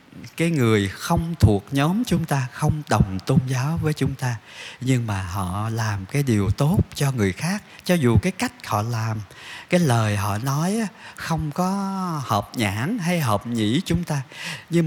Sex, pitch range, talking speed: male, 105-145 Hz, 180 wpm